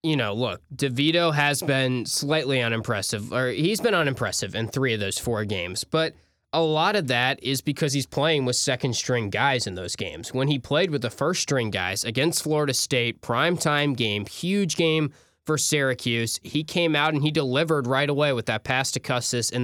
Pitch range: 120-150 Hz